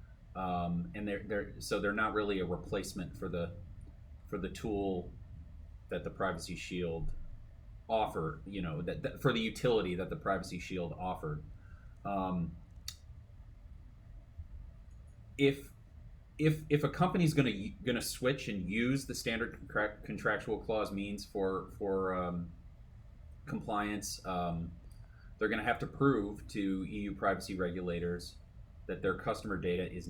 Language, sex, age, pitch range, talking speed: English, male, 30-49, 85-105 Hz, 140 wpm